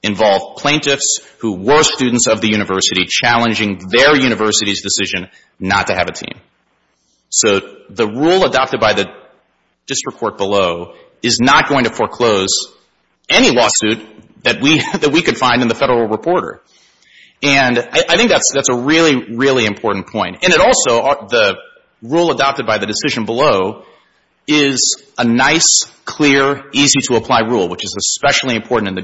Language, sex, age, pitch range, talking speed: English, male, 30-49, 105-135 Hz, 155 wpm